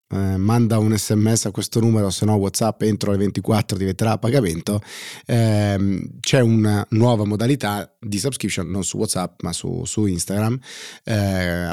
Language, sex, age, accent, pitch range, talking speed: Italian, male, 30-49, native, 100-120 Hz, 160 wpm